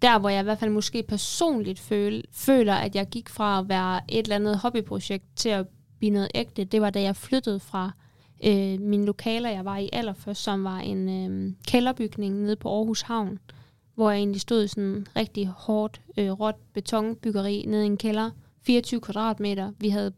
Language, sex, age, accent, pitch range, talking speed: Danish, female, 10-29, native, 195-220 Hz, 200 wpm